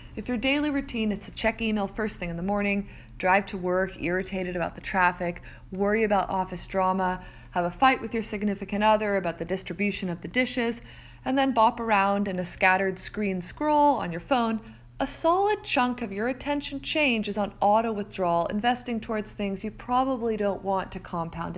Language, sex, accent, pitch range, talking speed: English, female, American, 180-245 Hz, 190 wpm